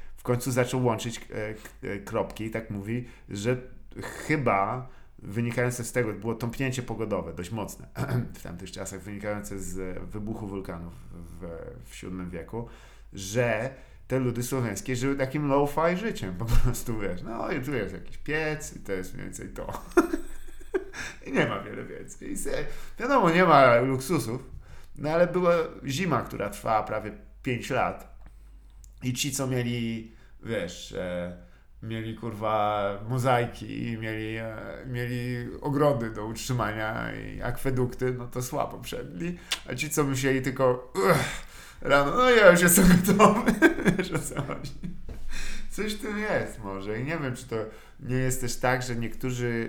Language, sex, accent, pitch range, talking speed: Polish, male, native, 105-135 Hz, 150 wpm